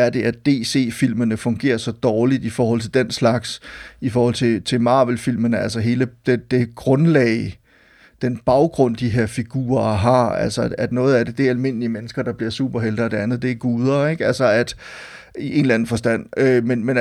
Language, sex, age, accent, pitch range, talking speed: Danish, male, 30-49, native, 115-140 Hz, 210 wpm